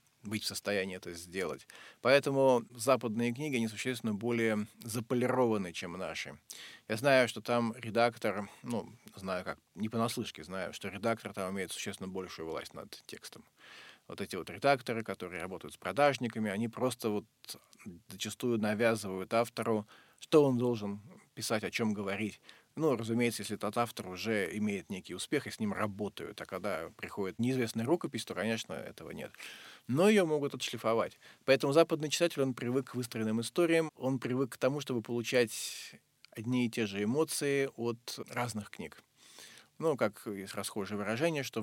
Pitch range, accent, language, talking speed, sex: 105-125 Hz, native, Russian, 155 wpm, male